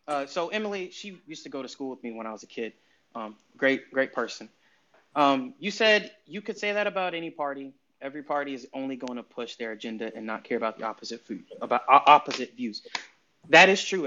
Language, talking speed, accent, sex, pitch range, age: English, 225 wpm, American, male, 125-160 Hz, 30-49